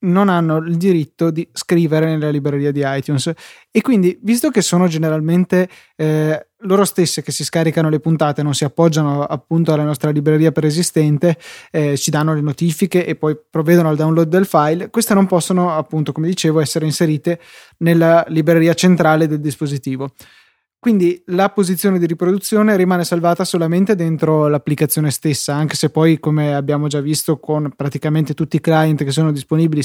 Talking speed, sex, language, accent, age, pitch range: 165 wpm, male, Italian, native, 20-39, 150-175 Hz